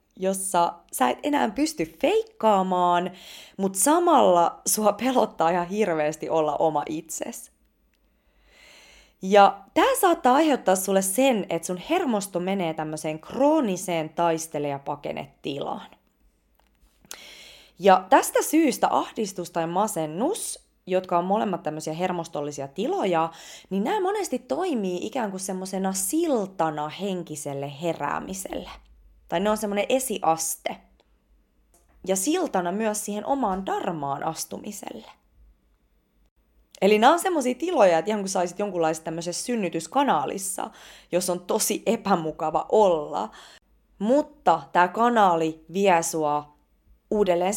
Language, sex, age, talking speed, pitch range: Finnish, female, 20-39, 105 wpm, 160-225 Hz